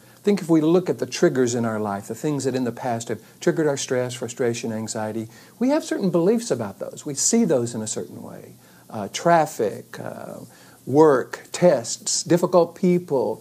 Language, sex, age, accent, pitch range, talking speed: English, male, 60-79, American, 120-175 Hz, 190 wpm